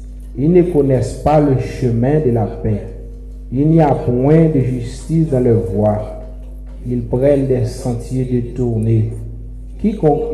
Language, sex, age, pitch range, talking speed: French, male, 50-69, 115-130 Hz, 140 wpm